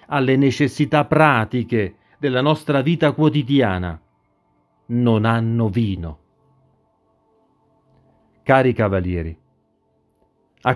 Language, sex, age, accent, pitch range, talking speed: Italian, male, 40-59, native, 115-160 Hz, 75 wpm